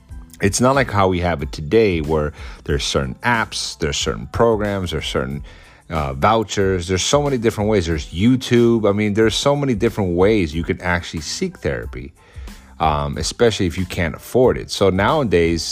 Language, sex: English, male